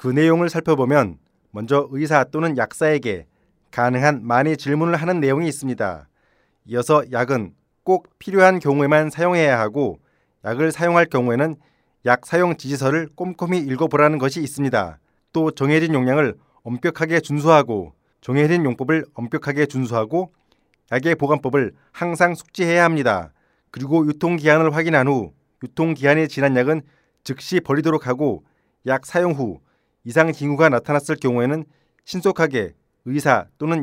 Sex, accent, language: male, native, Korean